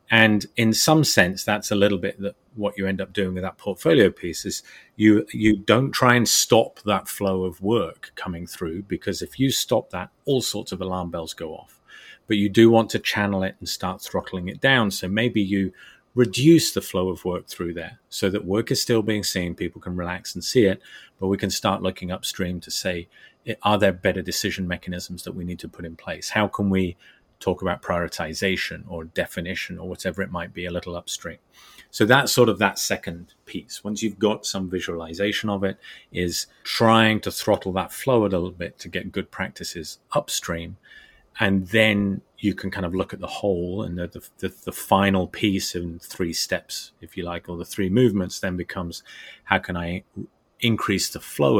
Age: 30-49